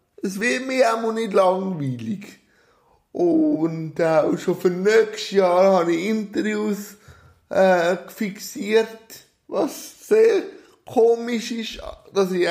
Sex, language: male, German